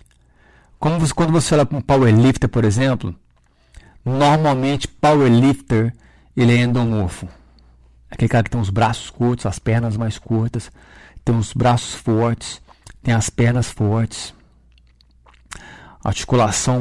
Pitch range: 95-140 Hz